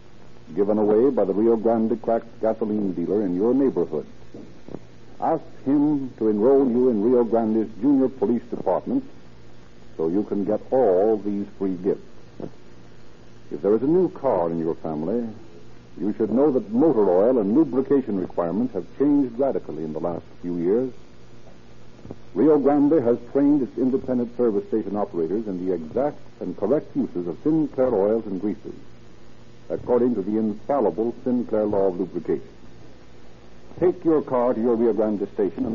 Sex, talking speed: male, 160 wpm